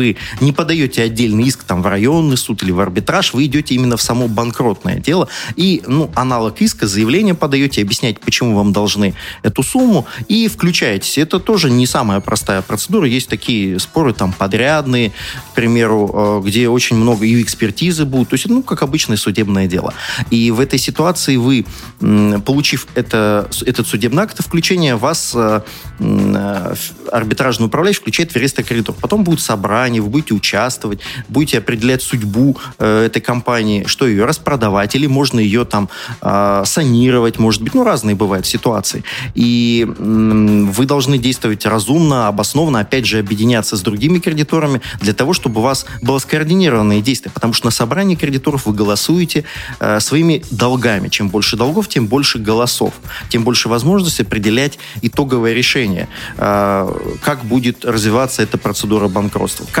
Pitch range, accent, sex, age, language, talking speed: 110-140 Hz, native, male, 30-49, Russian, 155 wpm